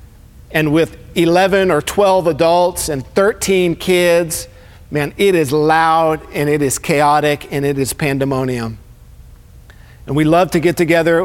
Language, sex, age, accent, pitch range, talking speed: English, male, 50-69, American, 140-180 Hz, 145 wpm